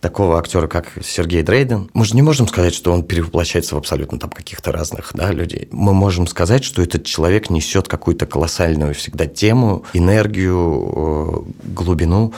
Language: Russian